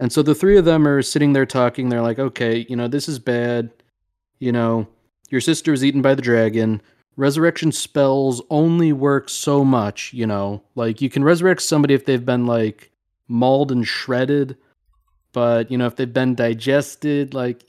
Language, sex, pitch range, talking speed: English, male, 115-140 Hz, 185 wpm